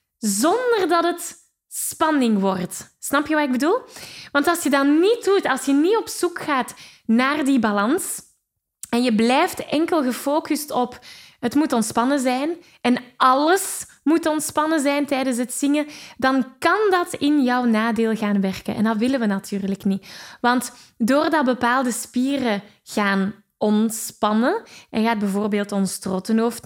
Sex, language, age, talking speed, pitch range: female, Dutch, 10-29, 155 wpm, 215-280 Hz